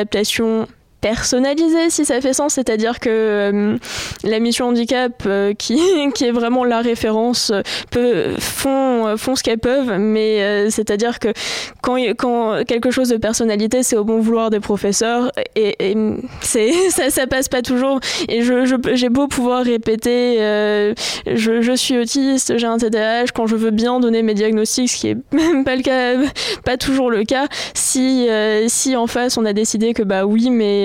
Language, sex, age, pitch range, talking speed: French, female, 20-39, 225-270 Hz, 185 wpm